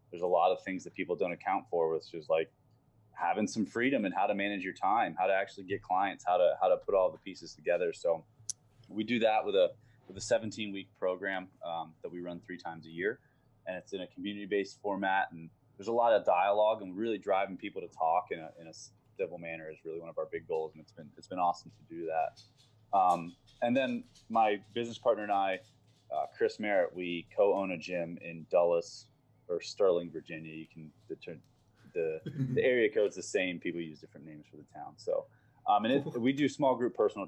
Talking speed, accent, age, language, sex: 220 wpm, American, 20-39, English, male